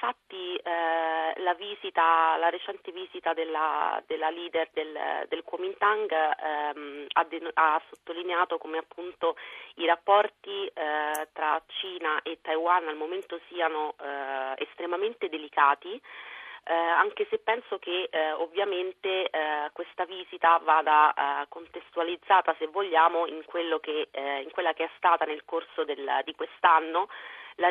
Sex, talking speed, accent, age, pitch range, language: female, 135 wpm, native, 30-49, 150-180 Hz, Italian